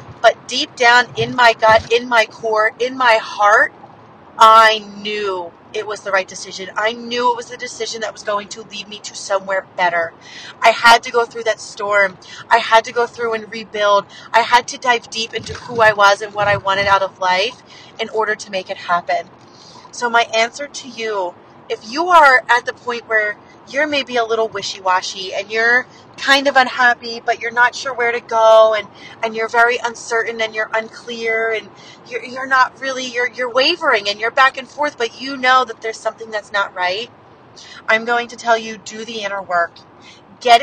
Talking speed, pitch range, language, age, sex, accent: 205 wpm, 205-240 Hz, English, 30-49, female, American